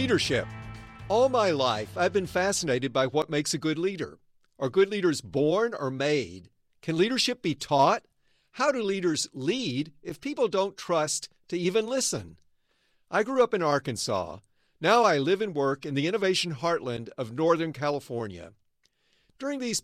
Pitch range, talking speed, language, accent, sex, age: 135-185 Hz, 160 wpm, English, American, male, 50-69